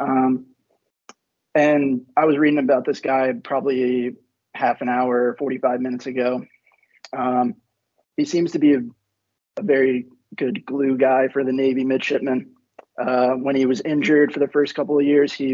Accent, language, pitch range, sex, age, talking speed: American, English, 125-140 Hz, male, 20-39, 160 wpm